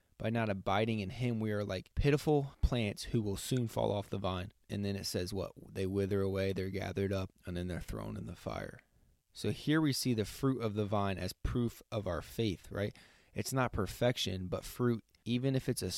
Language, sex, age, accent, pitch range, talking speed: English, male, 20-39, American, 100-120 Hz, 220 wpm